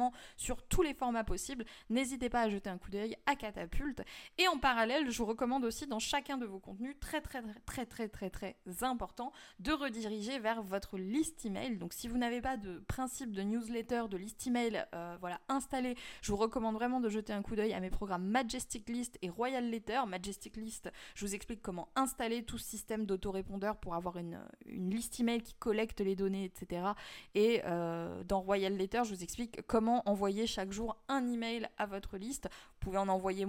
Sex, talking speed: female, 205 wpm